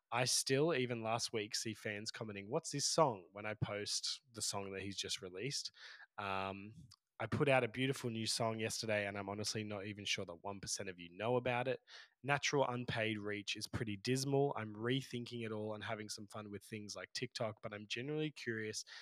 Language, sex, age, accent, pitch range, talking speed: English, male, 20-39, Australian, 100-120 Hz, 200 wpm